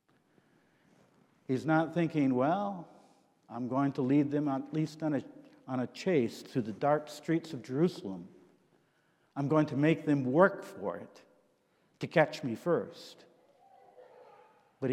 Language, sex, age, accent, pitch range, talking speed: English, male, 60-79, American, 140-175 Hz, 135 wpm